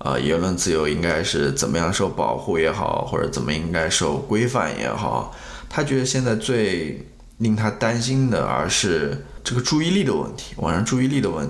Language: Chinese